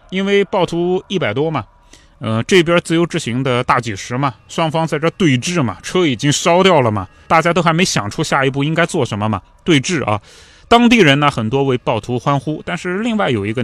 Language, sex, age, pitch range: Chinese, male, 20-39, 105-165 Hz